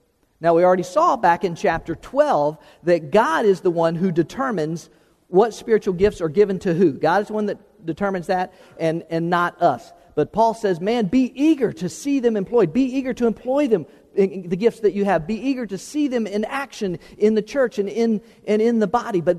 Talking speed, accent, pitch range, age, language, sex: 215 wpm, American, 175-230 Hz, 50-69, English, male